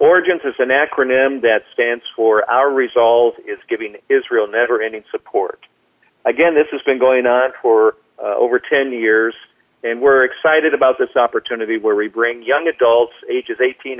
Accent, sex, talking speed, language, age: American, male, 165 wpm, English, 50-69